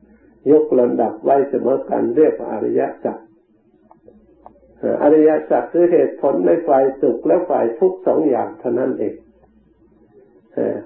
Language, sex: Thai, male